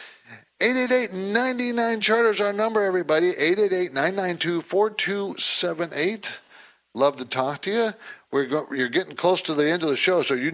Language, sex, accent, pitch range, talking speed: English, male, American, 135-200 Hz, 155 wpm